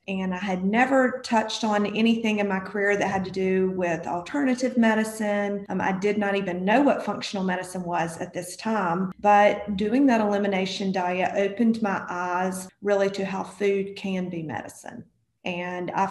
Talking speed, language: 175 wpm, English